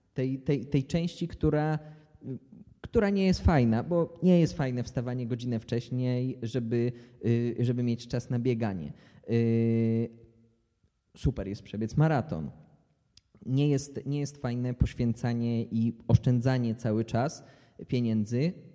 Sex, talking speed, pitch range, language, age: male, 115 wpm, 115-130 Hz, Polish, 20-39